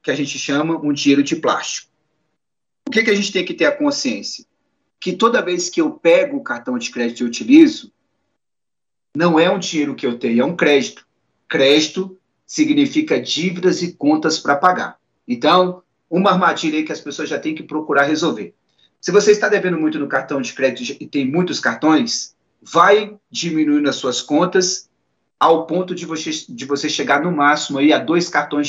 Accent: Brazilian